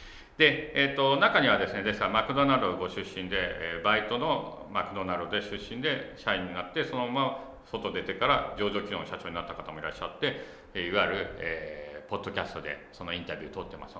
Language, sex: Japanese, male